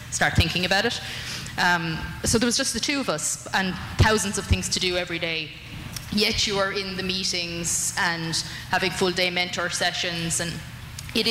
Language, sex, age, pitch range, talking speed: English, female, 20-39, 175-200 Hz, 185 wpm